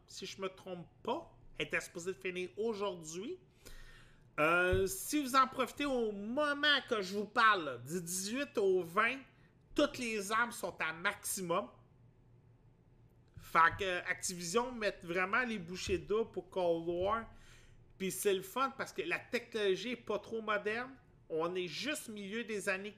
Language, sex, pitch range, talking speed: French, male, 155-220 Hz, 165 wpm